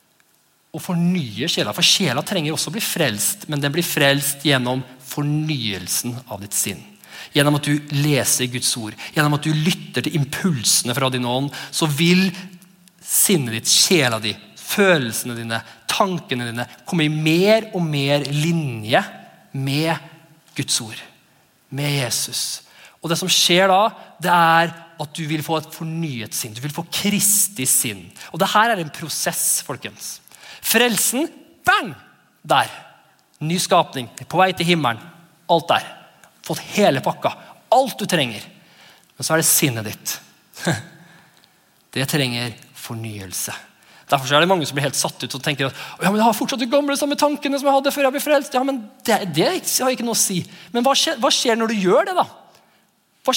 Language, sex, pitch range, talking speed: English, male, 140-195 Hz, 175 wpm